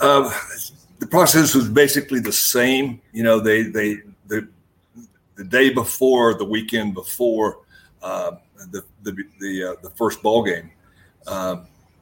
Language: English